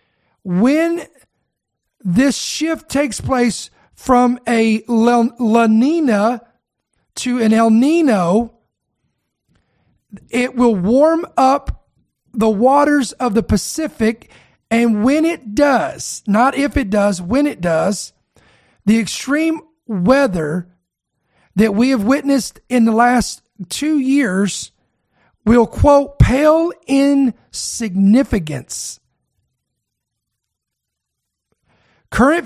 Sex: male